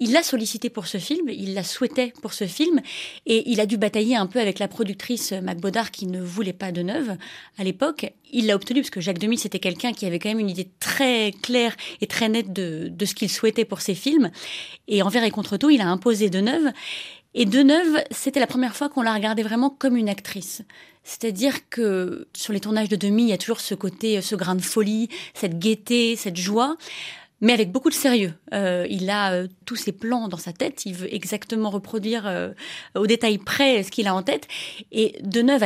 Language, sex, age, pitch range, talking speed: French, female, 30-49, 195-240 Hz, 220 wpm